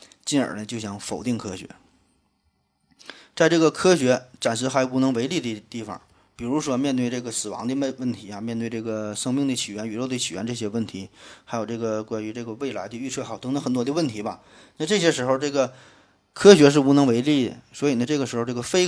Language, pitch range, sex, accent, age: Chinese, 115-140 Hz, male, native, 20-39